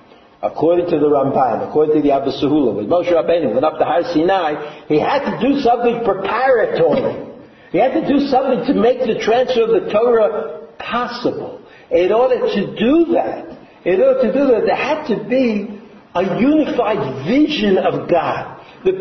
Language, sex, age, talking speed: English, male, 60-79, 175 wpm